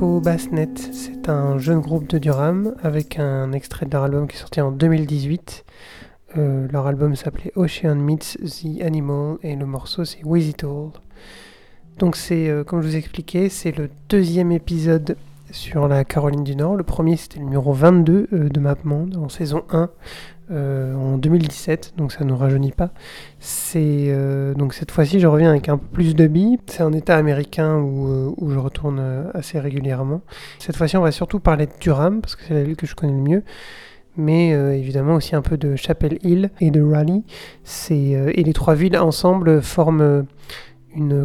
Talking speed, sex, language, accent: 195 wpm, male, French, French